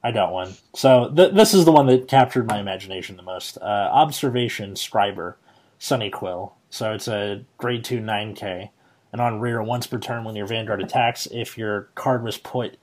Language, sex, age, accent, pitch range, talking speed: English, male, 30-49, American, 105-130 Hz, 185 wpm